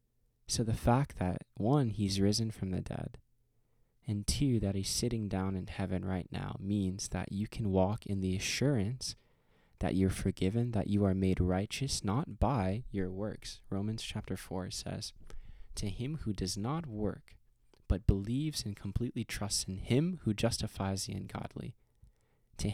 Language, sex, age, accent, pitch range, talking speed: English, male, 20-39, American, 95-115 Hz, 165 wpm